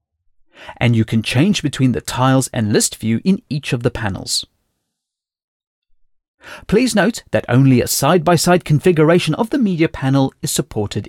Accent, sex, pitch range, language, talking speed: British, male, 105-170 Hz, English, 150 wpm